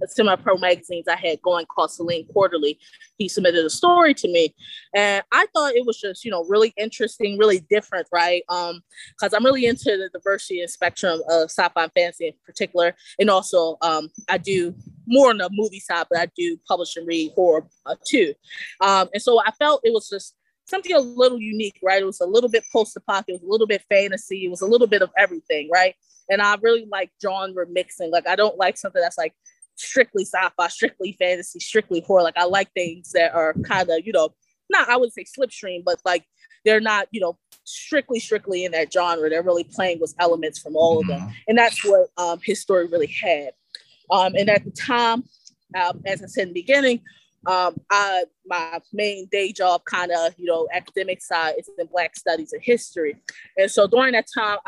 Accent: American